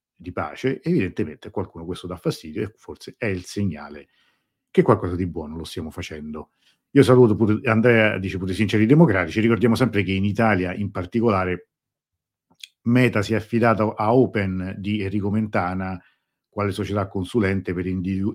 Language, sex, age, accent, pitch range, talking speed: Italian, male, 50-69, native, 90-115 Hz, 160 wpm